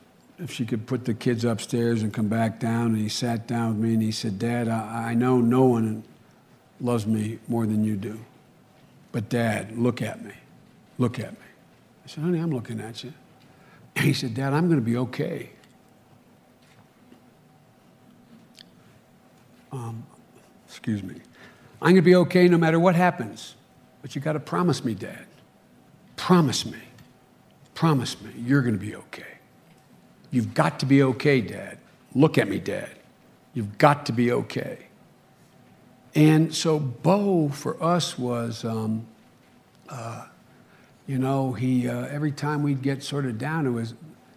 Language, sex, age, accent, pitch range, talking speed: English, male, 60-79, American, 115-155 Hz, 160 wpm